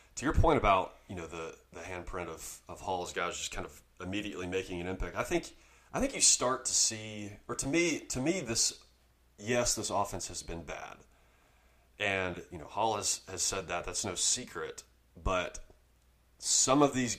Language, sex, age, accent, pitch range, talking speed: English, male, 30-49, American, 85-100 Hz, 190 wpm